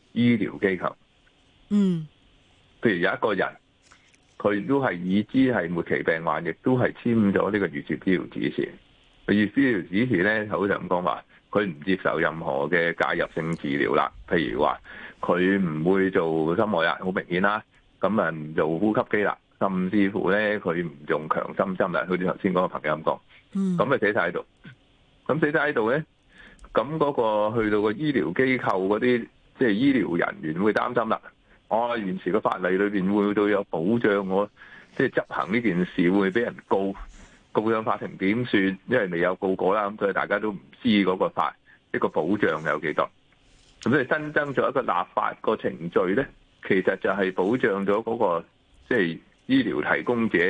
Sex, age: male, 30-49